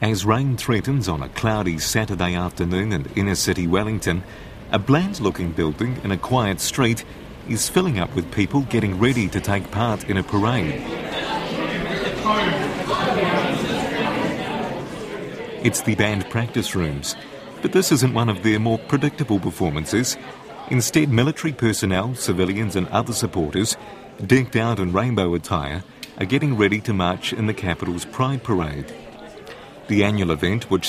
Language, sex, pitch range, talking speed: English, male, 95-120 Hz, 140 wpm